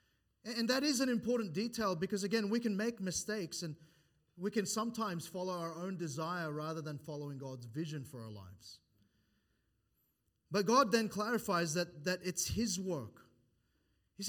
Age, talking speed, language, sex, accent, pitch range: 30-49, 160 wpm, English, male, Australian, 150-210 Hz